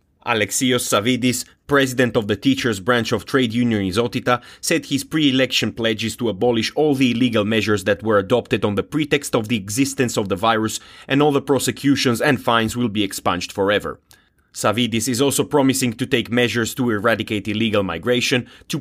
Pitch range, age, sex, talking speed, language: 105-125 Hz, 30-49, male, 175 wpm, English